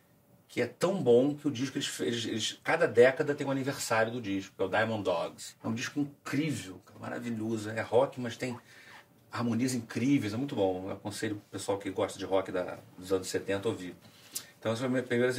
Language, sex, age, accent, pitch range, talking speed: Portuguese, male, 40-59, Brazilian, 105-130 Hz, 215 wpm